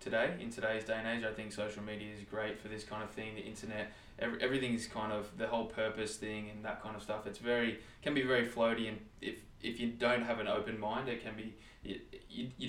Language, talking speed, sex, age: English, 250 wpm, male, 20-39